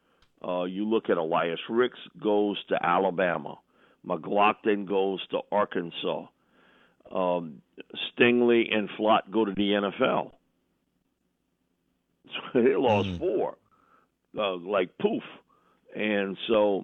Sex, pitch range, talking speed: male, 95-125 Hz, 105 wpm